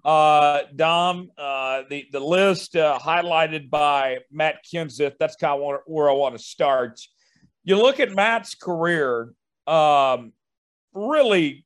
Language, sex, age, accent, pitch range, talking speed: English, male, 50-69, American, 150-180 Hz, 135 wpm